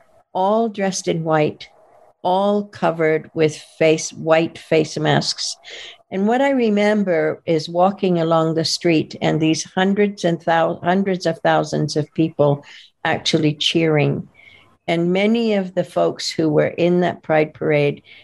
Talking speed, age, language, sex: 140 wpm, 60-79, English, female